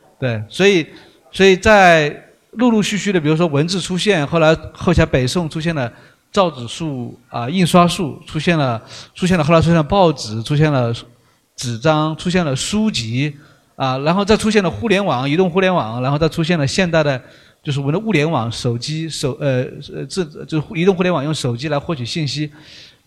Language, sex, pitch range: Chinese, male, 140-180 Hz